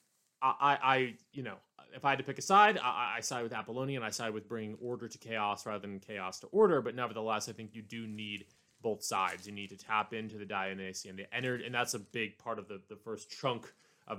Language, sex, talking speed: English, male, 240 wpm